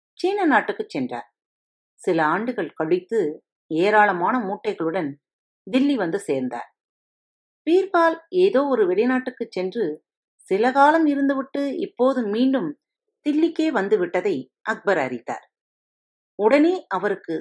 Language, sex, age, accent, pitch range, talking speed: Tamil, female, 40-59, native, 185-290 Hz, 95 wpm